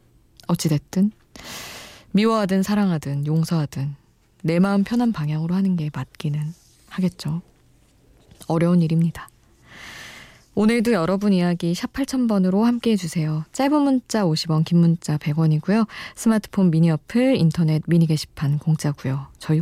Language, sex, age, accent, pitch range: Korean, female, 20-39, native, 155-205 Hz